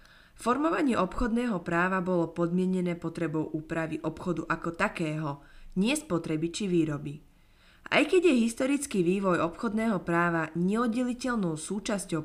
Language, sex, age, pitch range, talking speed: Slovak, female, 20-39, 160-215 Hz, 115 wpm